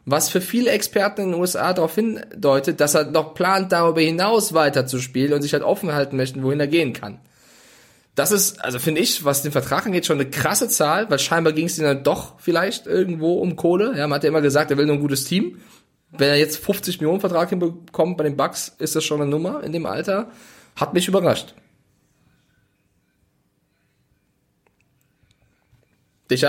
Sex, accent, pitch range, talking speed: male, German, 135-175 Hz, 190 wpm